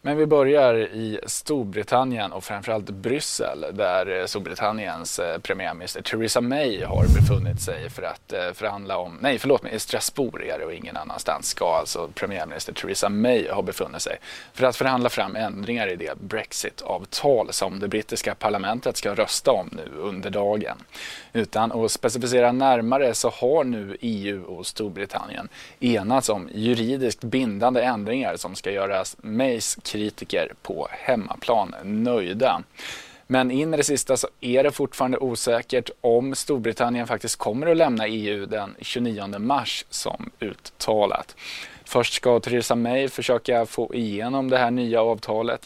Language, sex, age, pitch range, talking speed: Swedish, male, 20-39, 110-135 Hz, 140 wpm